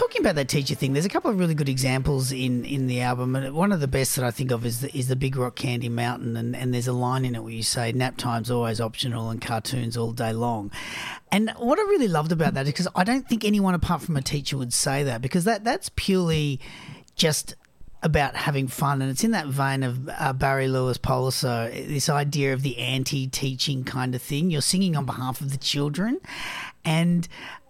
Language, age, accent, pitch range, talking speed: English, 40-59, Australian, 130-180 Hz, 230 wpm